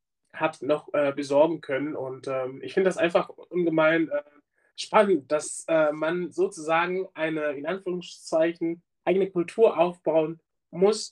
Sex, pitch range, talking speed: male, 140-175 Hz, 135 wpm